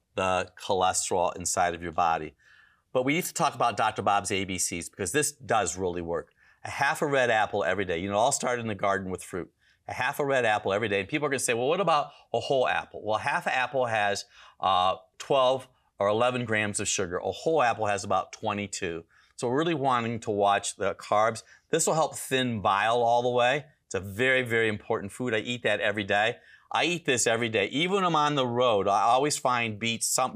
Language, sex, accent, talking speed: English, male, American, 225 wpm